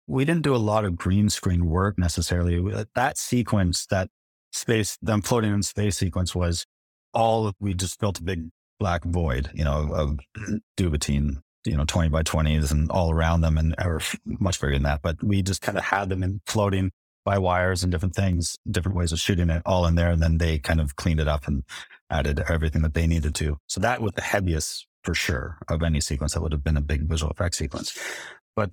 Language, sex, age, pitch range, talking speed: English, male, 30-49, 80-100 Hz, 220 wpm